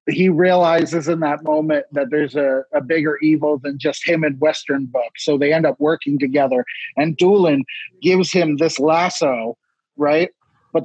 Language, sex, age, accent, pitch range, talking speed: English, male, 30-49, American, 145-170 Hz, 170 wpm